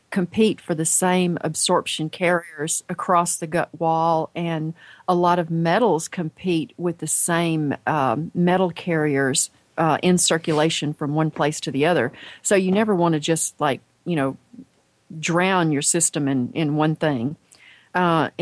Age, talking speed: 40-59, 155 wpm